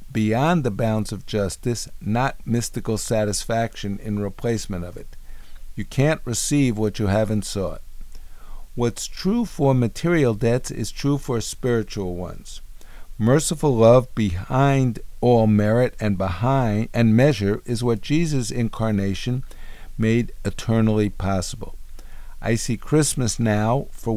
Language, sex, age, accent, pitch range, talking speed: English, male, 50-69, American, 95-120 Hz, 125 wpm